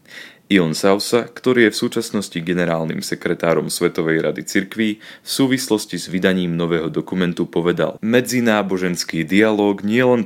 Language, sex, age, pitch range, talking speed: Slovak, male, 30-49, 85-105 Hz, 125 wpm